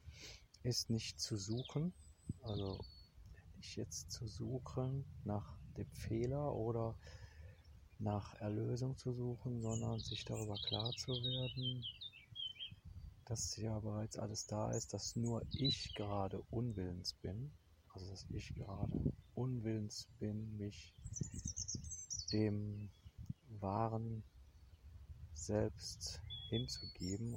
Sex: male